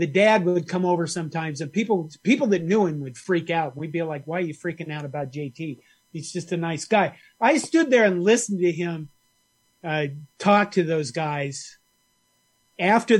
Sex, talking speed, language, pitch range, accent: male, 195 wpm, English, 155-190 Hz, American